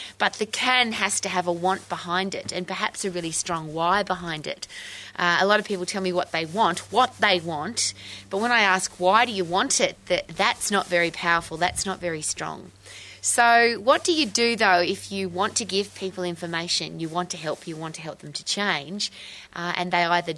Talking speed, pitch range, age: 225 wpm, 150-185 Hz, 20-39